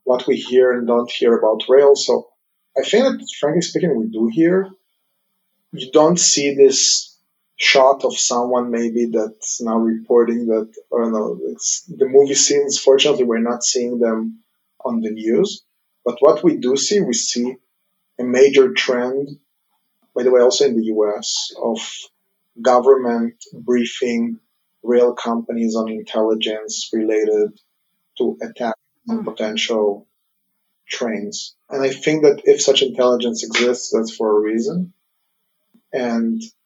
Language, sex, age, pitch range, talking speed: English, male, 30-49, 115-185 Hz, 140 wpm